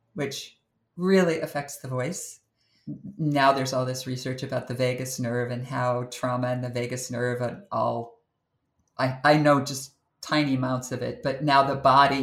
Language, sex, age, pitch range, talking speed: English, female, 50-69, 125-165 Hz, 170 wpm